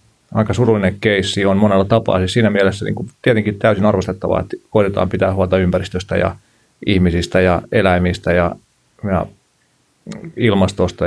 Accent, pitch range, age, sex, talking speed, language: native, 90-110 Hz, 30-49, male, 135 wpm, Finnish